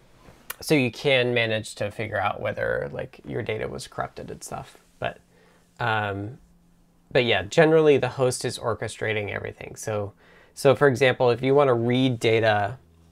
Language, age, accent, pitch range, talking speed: English, 20-39, American, 105-130 Hz, 160 wpm